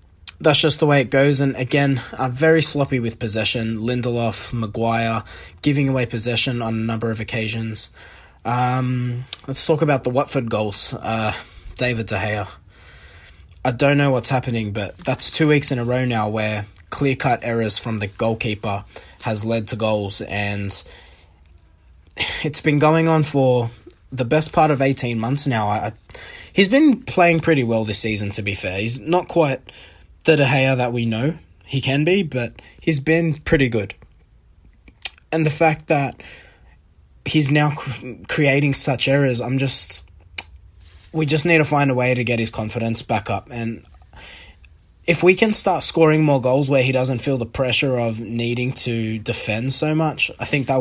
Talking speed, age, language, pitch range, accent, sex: 170 wpm, 20-39, English, 105-140 Hz, Australian, male